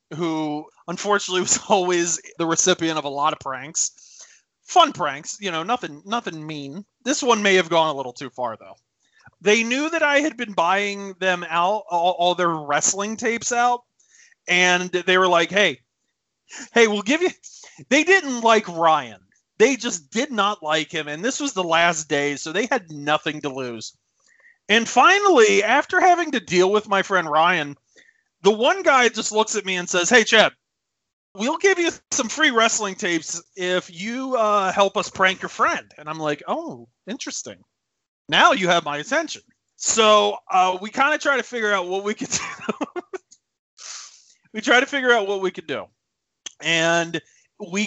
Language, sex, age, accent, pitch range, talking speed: English, male, 30-49, American, 170-240 Hz, 180 wpm